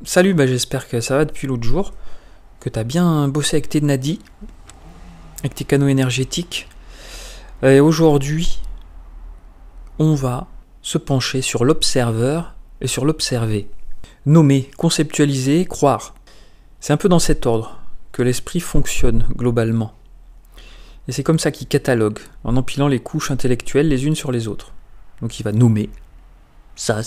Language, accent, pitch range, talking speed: French, French, 110-145 Hz, 145 wpm